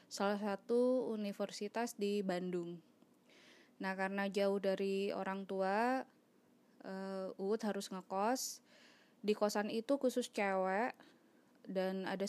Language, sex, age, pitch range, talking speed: Indonesian, female, 20-39, 190-235 Hz, 105 wpm